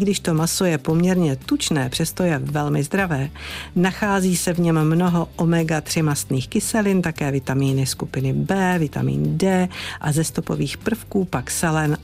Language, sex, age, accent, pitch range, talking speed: Czech, female, 50-69, native, 145-190 Hz, 150 wpm